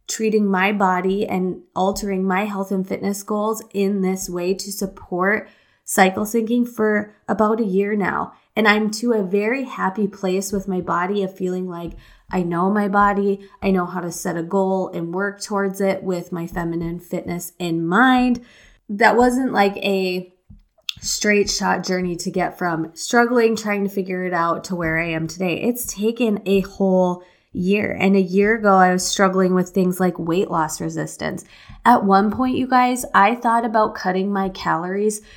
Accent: American